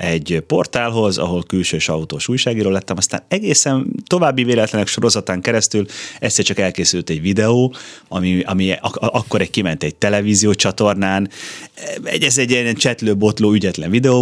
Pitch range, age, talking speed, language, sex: 90-125 Hz, 30-49, 170 wpm, Hungarian, male